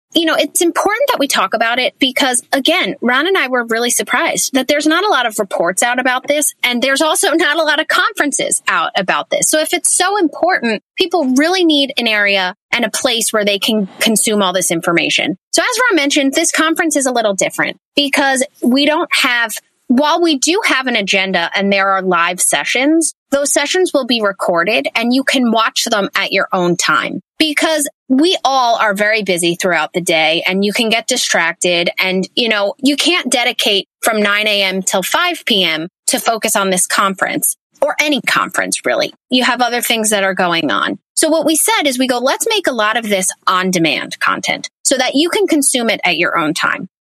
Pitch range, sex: 205-310 Hz, female